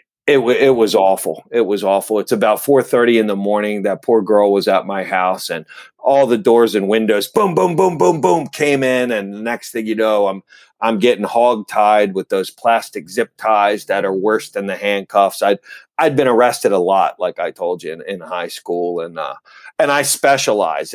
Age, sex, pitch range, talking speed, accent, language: 40-59, male, 100-130 Hz, 220 wpm, American, English